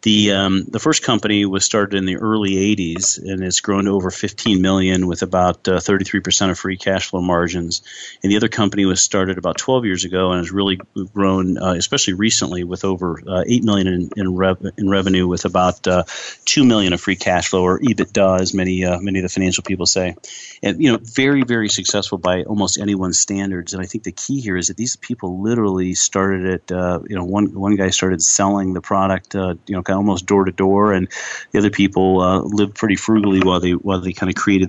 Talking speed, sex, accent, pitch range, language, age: 225 wpm, male, American, 90-100 Hz, English, 40-59